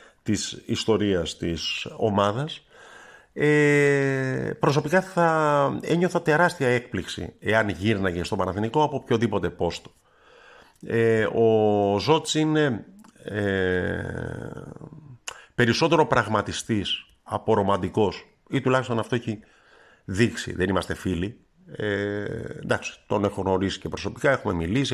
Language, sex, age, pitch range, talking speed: Greek, male, 50-69, 100-145 Hz, 100 wpm